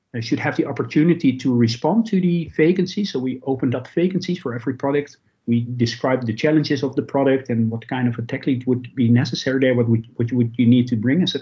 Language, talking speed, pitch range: English, 240 wpm, 115-155 Hz